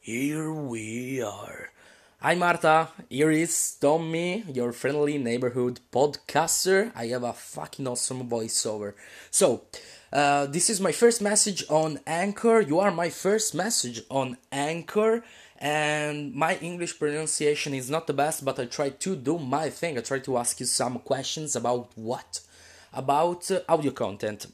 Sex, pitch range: male, 125-170 Hz